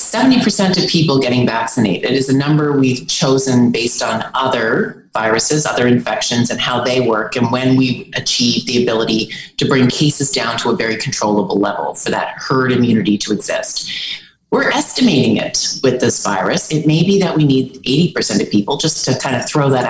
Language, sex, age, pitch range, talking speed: English, female, 30-49, 120-155 Hz, 185 wpm